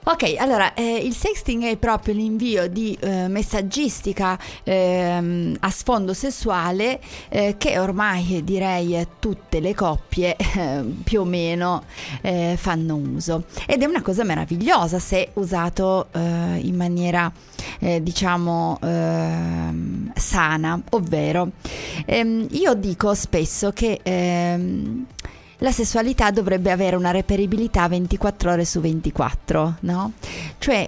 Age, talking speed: 30-49, 120 wpm